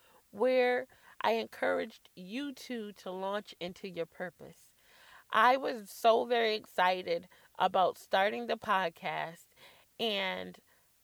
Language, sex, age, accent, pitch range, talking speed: English, female, 30-49, American, 185-250 Hz, 110 wpm